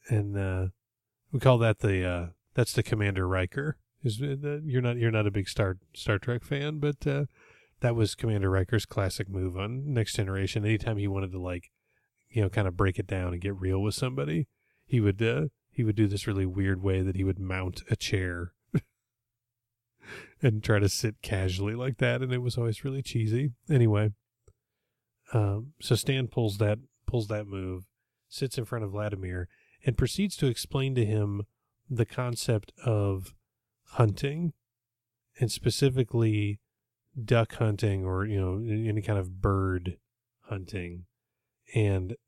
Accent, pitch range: American, 95-120 Hz